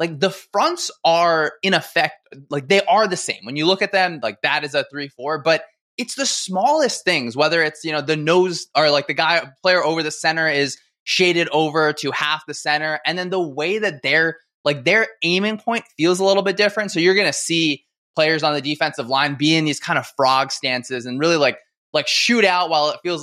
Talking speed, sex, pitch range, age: 225 wpm, male, 150-190 Hz, 20-39